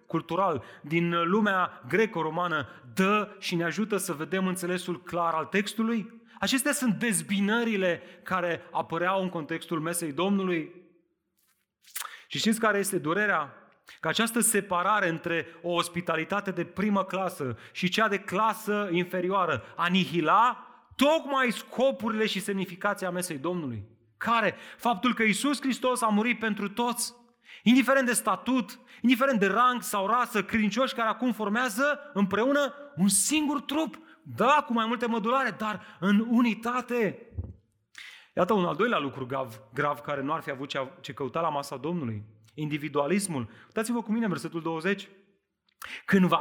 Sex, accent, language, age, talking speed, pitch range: male, native, Romanian, 30-49, 140 wpm, 165-225 Hz